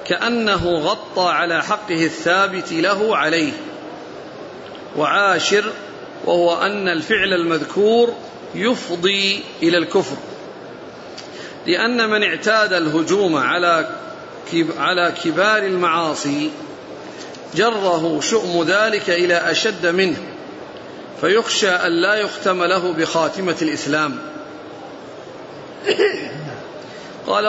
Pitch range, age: 165-205 Hz, 40-59